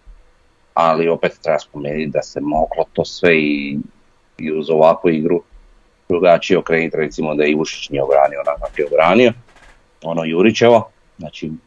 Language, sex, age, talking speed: Croatian, male, 30-49, 140 wpm